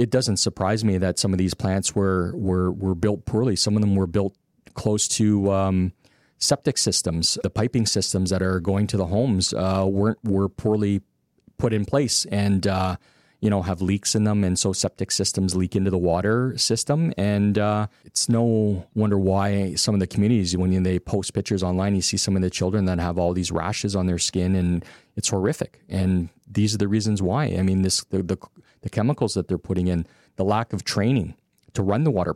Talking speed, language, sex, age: 215 wpm, English, male, 40-59